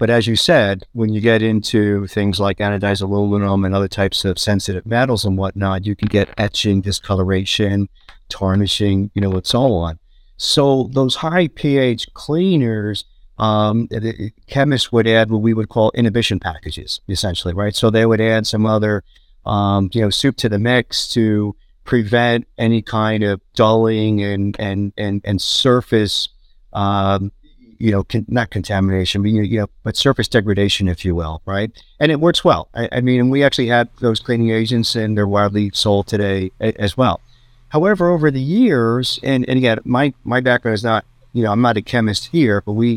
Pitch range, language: 100-120 Hz, English